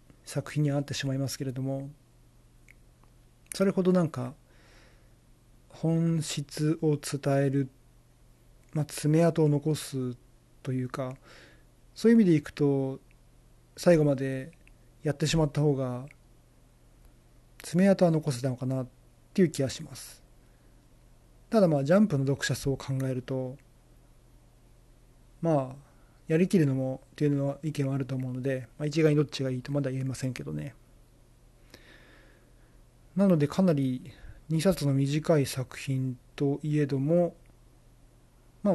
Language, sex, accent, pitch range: Japanese, male, native, 130-155 Hz